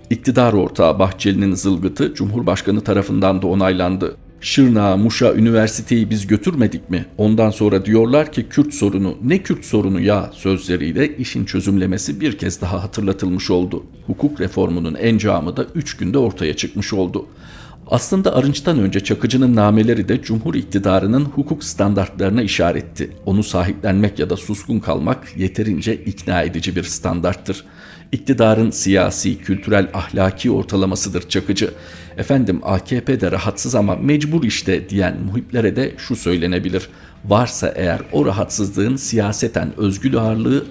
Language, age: Turkish, 50-69